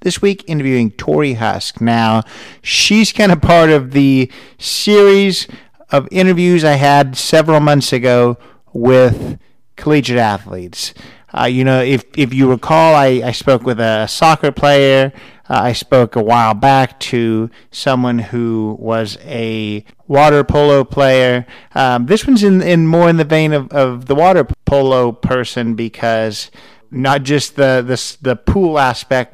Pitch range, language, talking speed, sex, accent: 120-150 Hz, English, 150 wpm, male, American